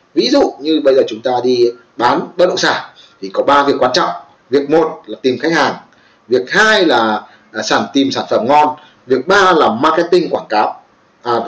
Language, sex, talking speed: Vietnamese, male, 205 wpm